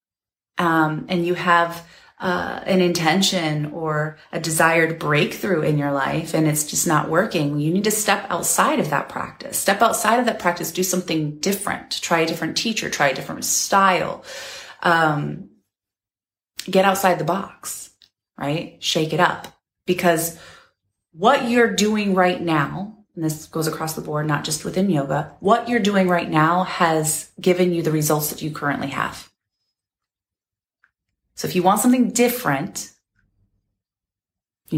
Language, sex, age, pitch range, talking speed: English, female, 30-49, 140-180 Hz, 155 wpm